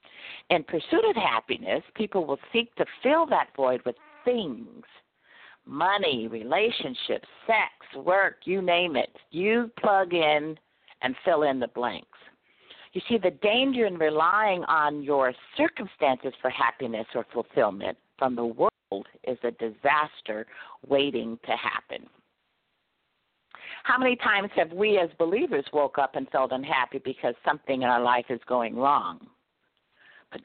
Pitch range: 140-215 Hz